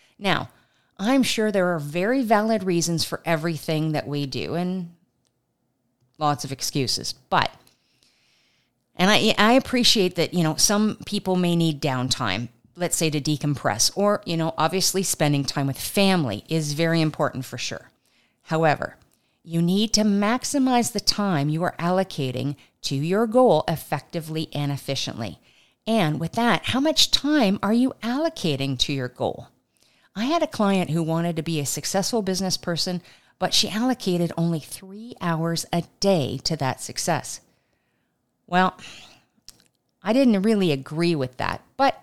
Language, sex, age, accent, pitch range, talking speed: English, female, 50-69, American, 150-215 Hz, 150 wpm